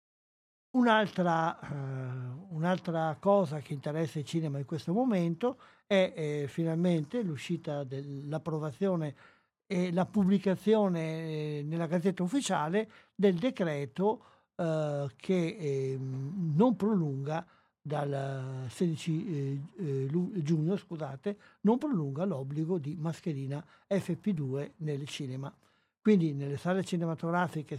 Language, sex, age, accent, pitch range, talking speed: Italian, male, 60-79, native, 150-185 Hz, 100 wpm